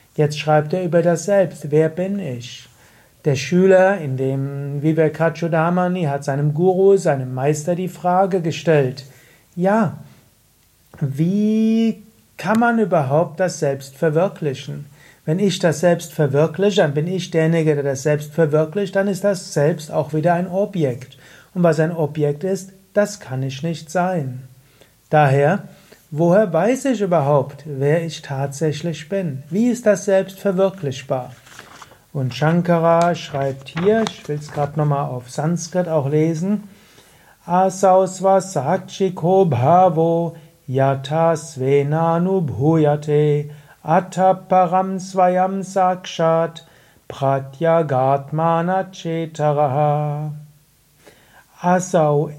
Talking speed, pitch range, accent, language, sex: 115 wpm, 145-185 Hz, German, German, male